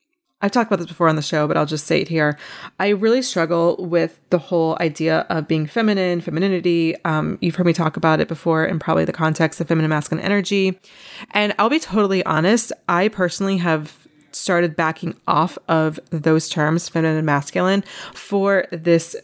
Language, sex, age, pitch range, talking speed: English, female, 20-39, 160-185 Hz, 185 wpm